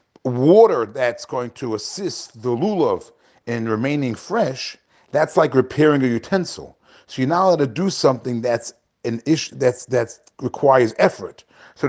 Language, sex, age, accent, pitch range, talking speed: English, male, 40-59, American, 120-170 Hz, 145 wpm